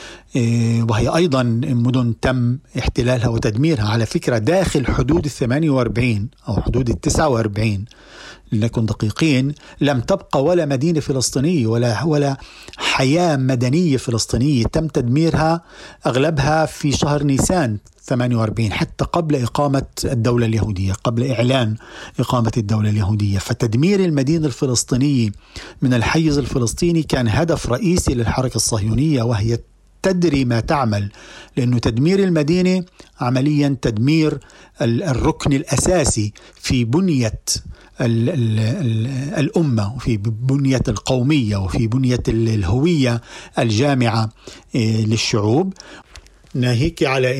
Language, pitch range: Arabic, 115-145 Hz